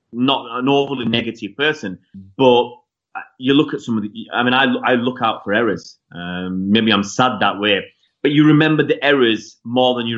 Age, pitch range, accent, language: 30-49, 105-130 Hz, British, English